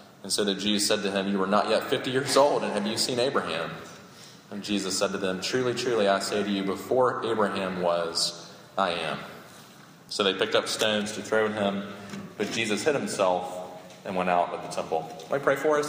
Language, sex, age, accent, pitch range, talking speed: English, male, 30-49, American, 90-100 Hz, 225 wpm